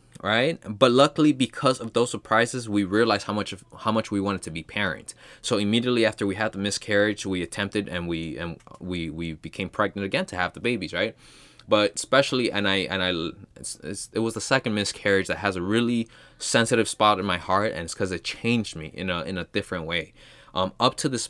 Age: 20-39